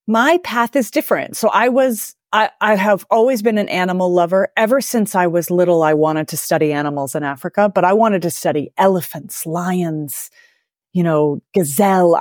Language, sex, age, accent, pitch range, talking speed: English, female, 30-49, American, 165-215 Hz, 175 wpm